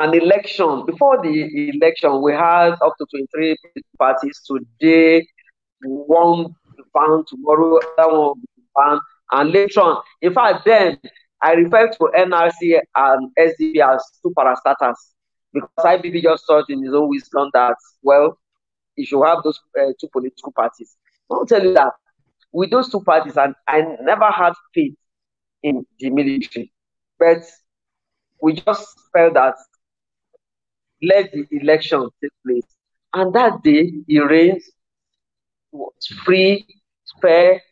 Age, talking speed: 40-59, 135 wpm